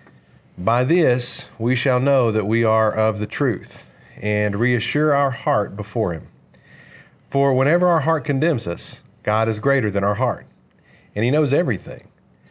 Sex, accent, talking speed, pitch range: male, American, 160 wpm, 105-135 Hz